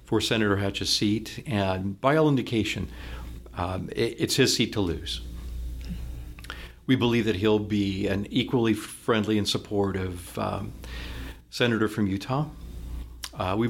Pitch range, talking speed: 90-115 Hz, 130 wpm